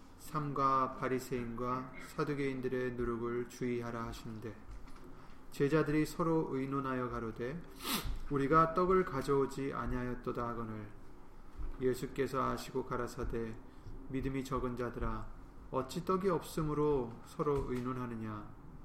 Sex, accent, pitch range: male, native, 120-145 Hz